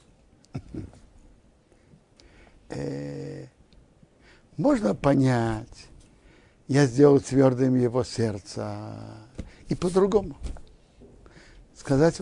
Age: 60-79